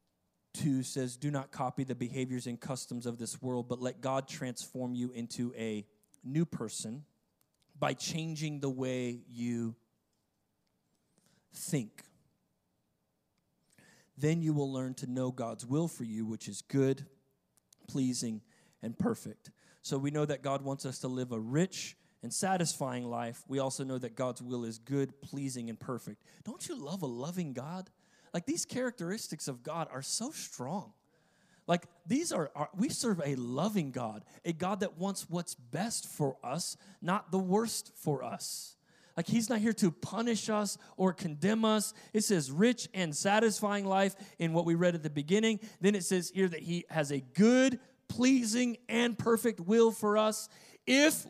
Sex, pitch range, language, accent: male, 130-210 Hz, English, American